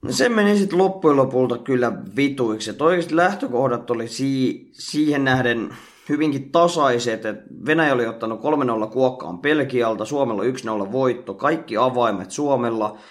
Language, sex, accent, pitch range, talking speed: Finnish, male, native, 120-150 Hz, 120 wpm